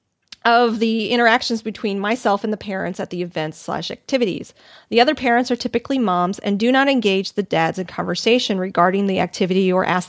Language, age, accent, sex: English, 30-49, American, female